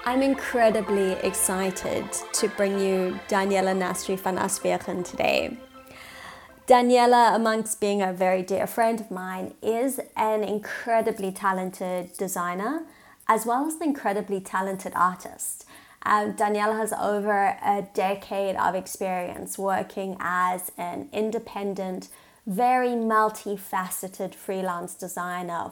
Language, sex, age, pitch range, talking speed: English, female, 20-39, 190-220 Hz, 110 wpm